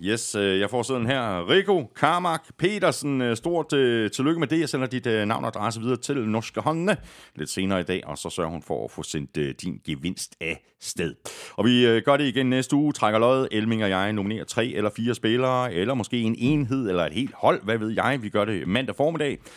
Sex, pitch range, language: male, 95-135 Hz, Danish